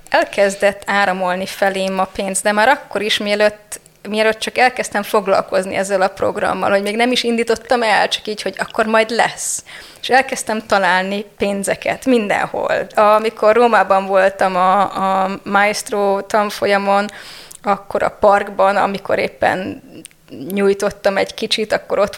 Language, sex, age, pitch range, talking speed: Hungarian, female, 20-39, 190-220 Hz, 140 wpm